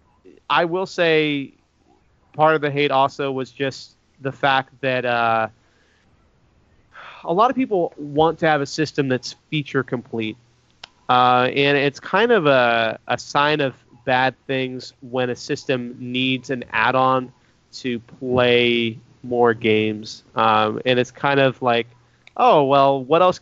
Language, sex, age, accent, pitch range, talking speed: English, male, 30-49, American, 120-150 Hz, 145 wpm